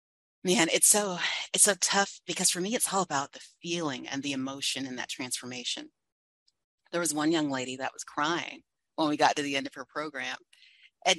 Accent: American